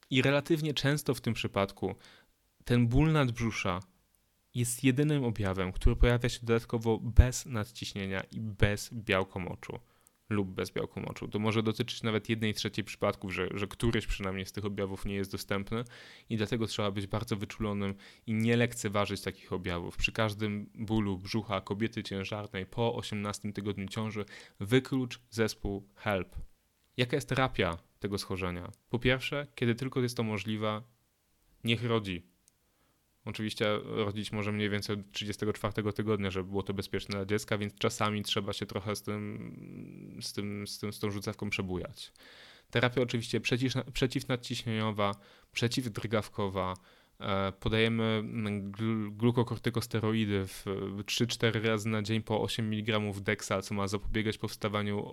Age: 10-29